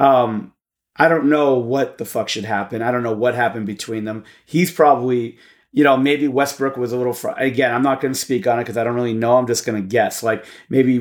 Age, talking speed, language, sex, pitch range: 30-49, 250 wpm, English, male, 115-145 Hz